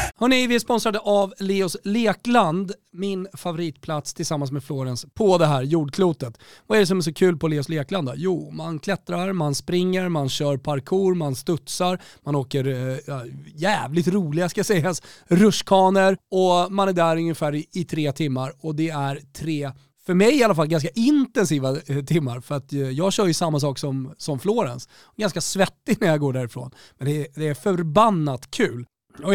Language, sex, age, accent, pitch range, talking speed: Swedish, male, 30-49, native, 140-190 Hz, 185 wpm